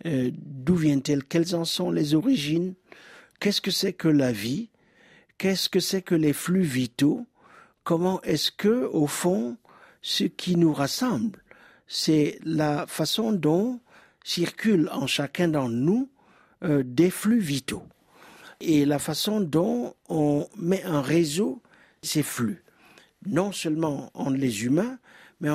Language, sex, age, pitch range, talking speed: French, male, 60-79, 145-180 Hz, 140 wpm